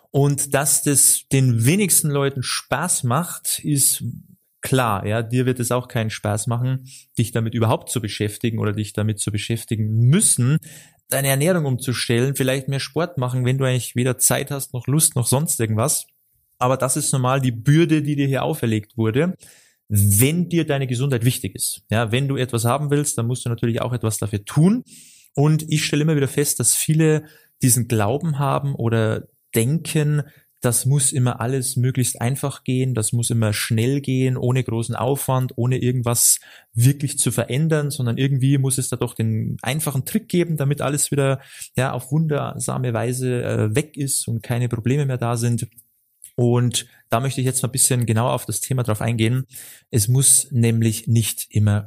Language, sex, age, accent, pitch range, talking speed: German, male, 20-39, German, 115-140 Hz, 180 wpm